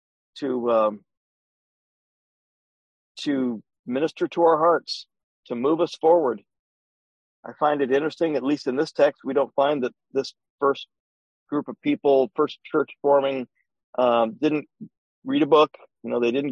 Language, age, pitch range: English, 50-69, 110-150 Hz